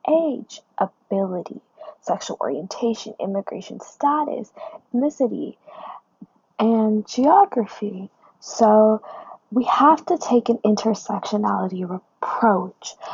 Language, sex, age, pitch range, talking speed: English, female, 10-29, 200-245 Hz, 80 wpm